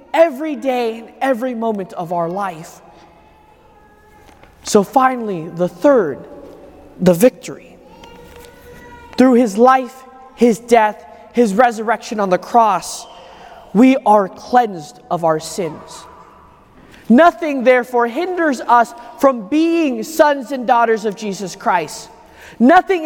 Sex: male